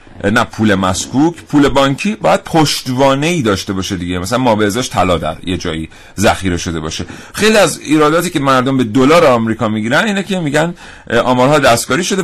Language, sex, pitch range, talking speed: Persian, male, 105-150 Hz, 170 wpm